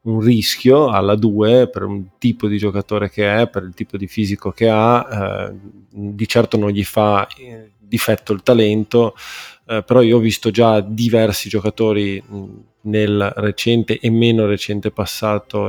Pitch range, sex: 100-110 Hz, male